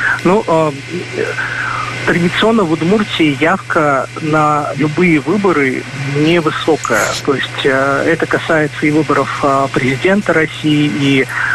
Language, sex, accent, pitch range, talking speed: Russian, male, native, 135-155 Hz, 110 wpm